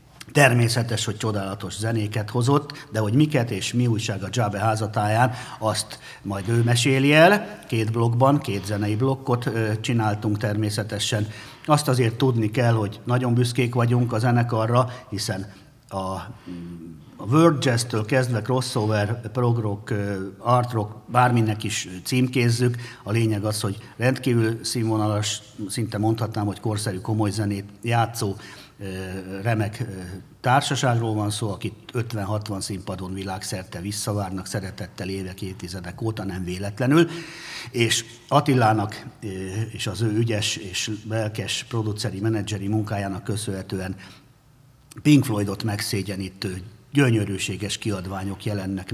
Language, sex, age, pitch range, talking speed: Hungarian, male, 50-69, 100-120 Hz, 115 wpm